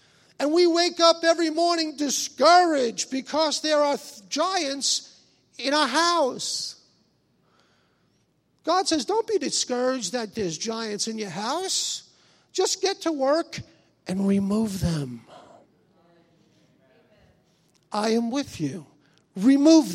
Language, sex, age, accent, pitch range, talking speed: English, male, 50-69, American, 200-295 Hz, 110 wpm